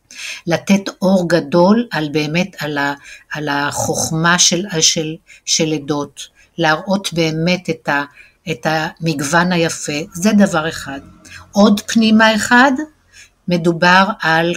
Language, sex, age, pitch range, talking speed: Hebrew, female, 60-79, 160-205 Hz, 100 wpm